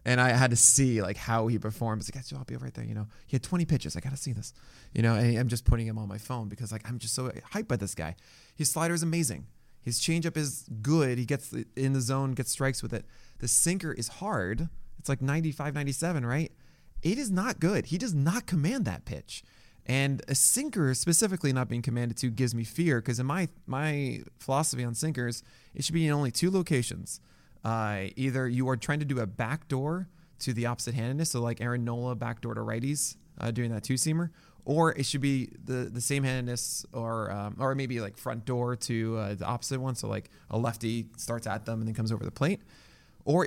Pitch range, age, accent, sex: 115-145 Hz, 20-39, American, male